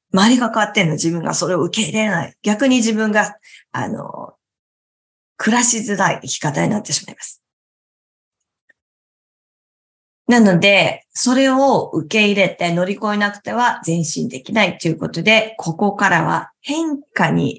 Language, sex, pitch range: Japanese, female, 170-230 Hz